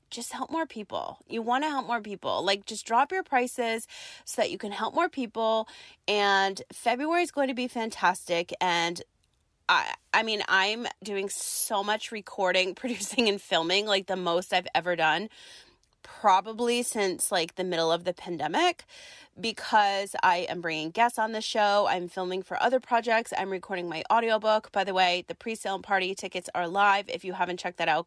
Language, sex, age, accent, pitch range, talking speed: English, female, 30-49, American, 180-230 Hz, 190 wpm